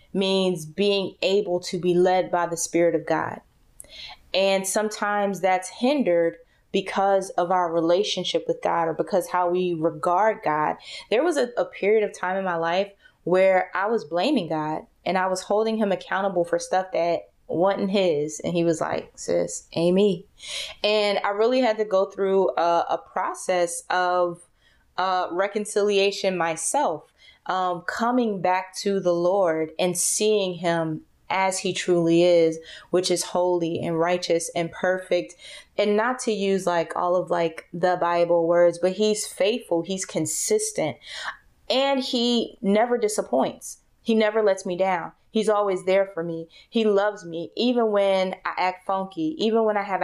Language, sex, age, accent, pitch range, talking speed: English, female, 20-39, American, 170-200 Hz, 160 wpm